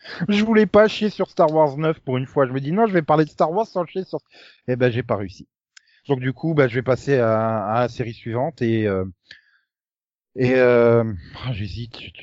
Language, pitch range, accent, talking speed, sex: French, 100-130 Hz, French, 235 wpm, male